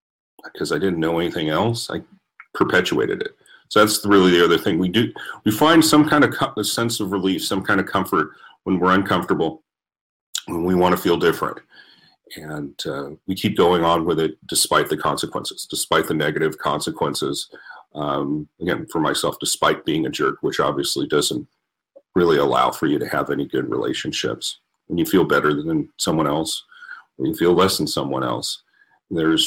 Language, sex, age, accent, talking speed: English, male, 40-59, American, 185 wpm